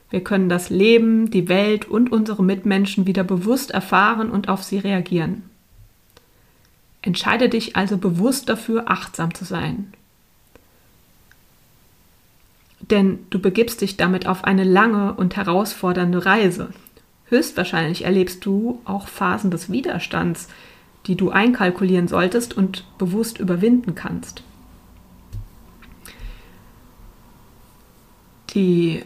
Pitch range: 165-205 Hz